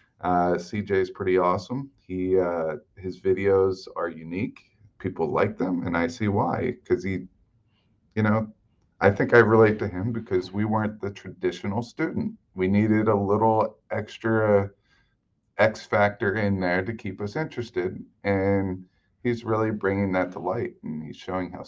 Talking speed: 160 wpm